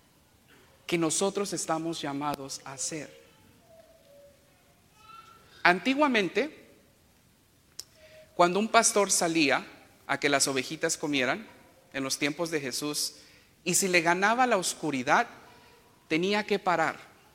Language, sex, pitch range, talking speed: English, male, 145-190 Hz, 105 wpm